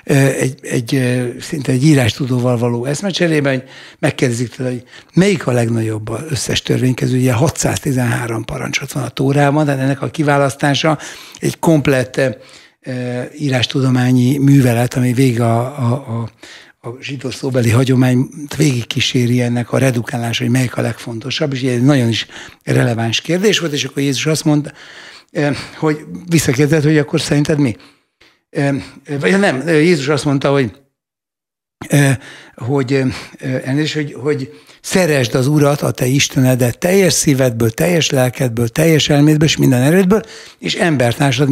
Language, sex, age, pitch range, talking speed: Hungarian, male, 60-79, 125-150 Hz, 130 wpm